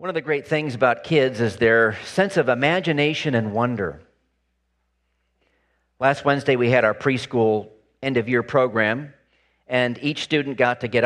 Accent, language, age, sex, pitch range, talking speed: American, English, 50-69, male, 95-145 Hz, 150 wpm